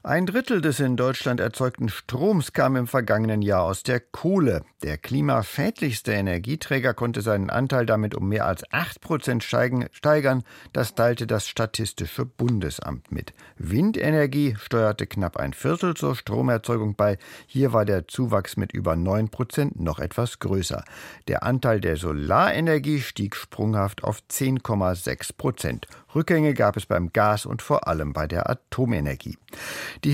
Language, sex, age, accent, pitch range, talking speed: German, male, 50-69, German, 100-140 Hz, 140 wpm